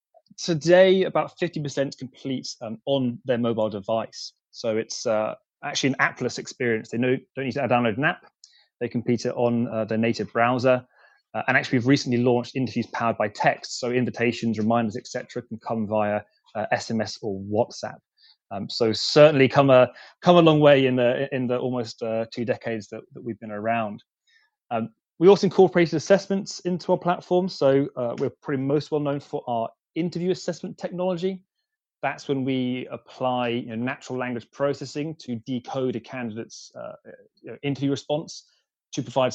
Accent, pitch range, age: British, 115-140 Hz, 20-39